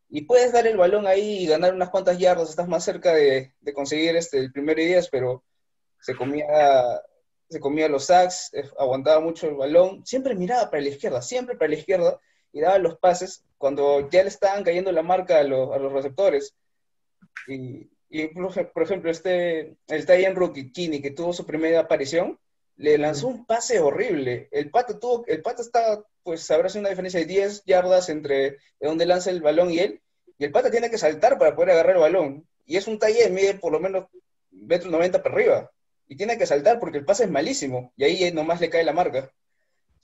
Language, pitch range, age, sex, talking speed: Spanish, 150-200 Hz, 20-39, male, 200 wpm